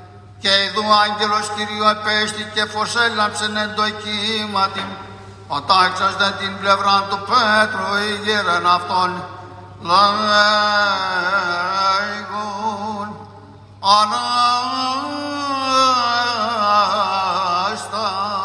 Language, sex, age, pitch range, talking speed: Greek, male, 60-79, 185-215 Hz, 70 wpm